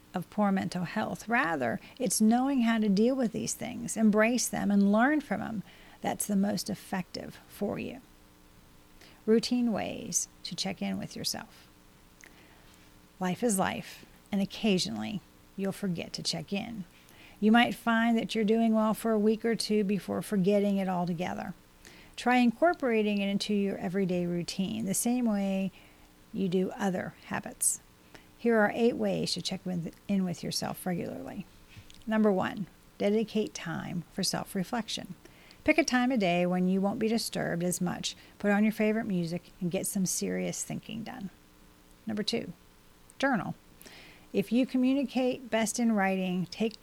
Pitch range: 180-225 Hz